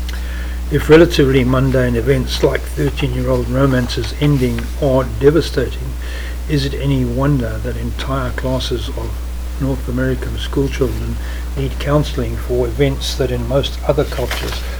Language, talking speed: English, 120 wpm